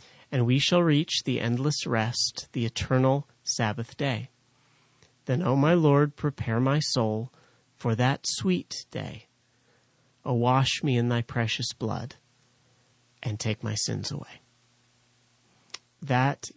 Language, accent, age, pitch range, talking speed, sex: English, American, 30-49, 120-140 Hz, 135 wpm, male